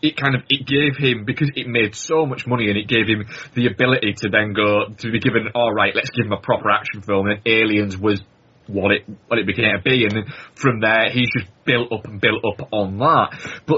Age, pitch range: 20-39, 110-140 Hz